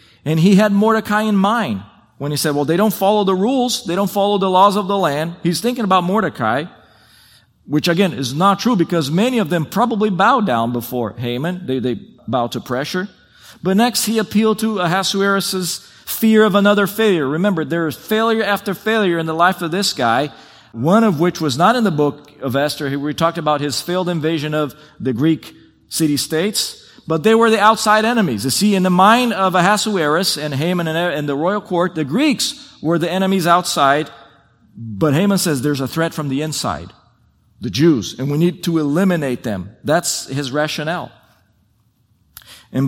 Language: English